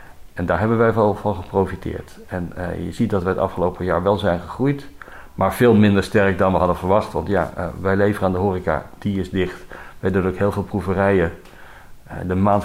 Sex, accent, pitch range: male, Dutch, 90-105 Hz